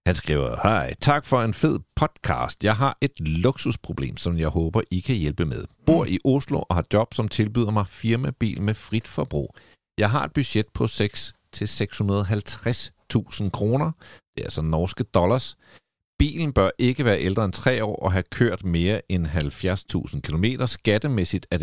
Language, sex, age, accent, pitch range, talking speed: Danish, male, 60-79, native, 85-115 Hz, 175 wpm